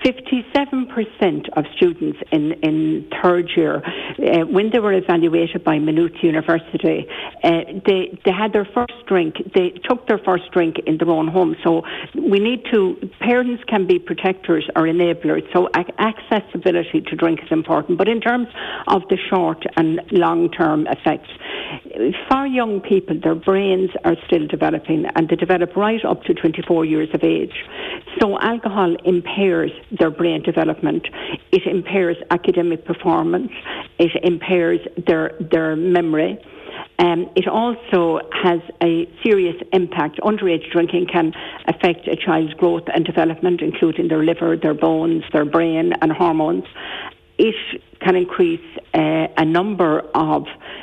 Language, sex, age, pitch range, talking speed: English, female, 60-79, 165-205 Hz, 145 wpm